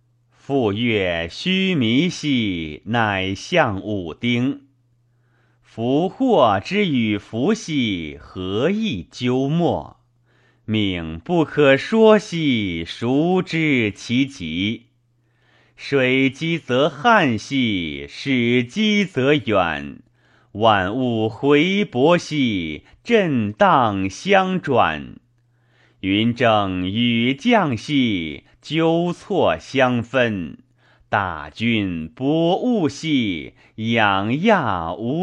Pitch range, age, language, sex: 110-155 Hz, 30-49, Chinese, male